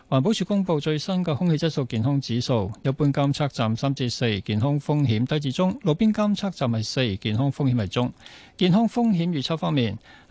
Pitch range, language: 120-170 Hz, Chinese